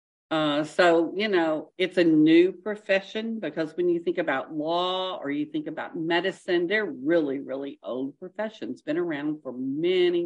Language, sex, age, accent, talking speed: Portuguese, female, 50-69, American, 165 wpm